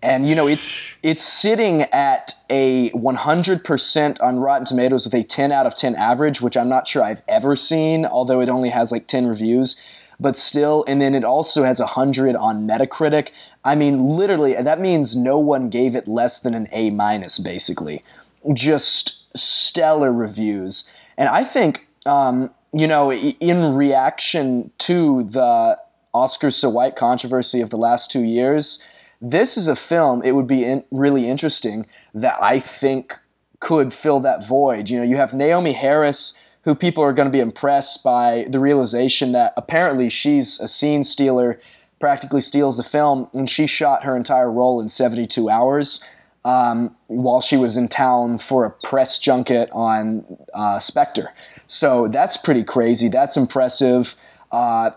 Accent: American